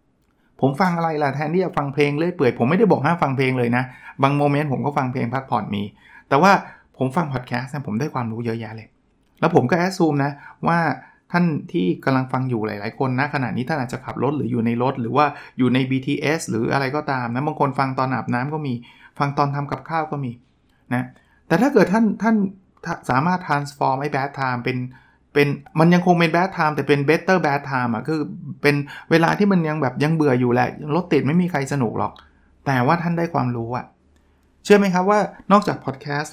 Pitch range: 120-155 Hz